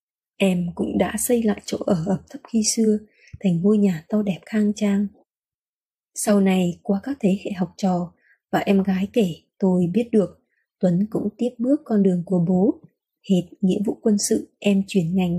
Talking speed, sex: 190 wpm, female